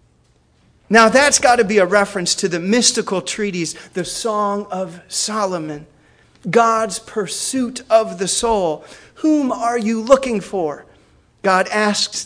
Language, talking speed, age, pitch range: English, 130 wpm, 30-49, 175-255 Hz